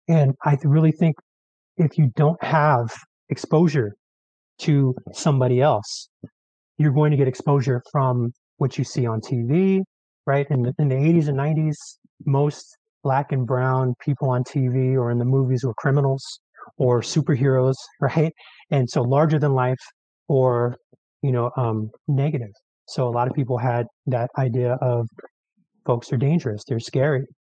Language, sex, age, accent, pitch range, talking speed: English, male, 30-49, American, 125-150 Hz, 155 wpm